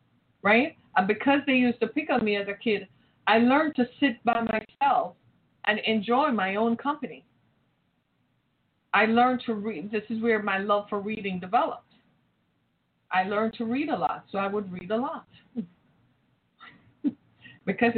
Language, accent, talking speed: English, American, 160 wpm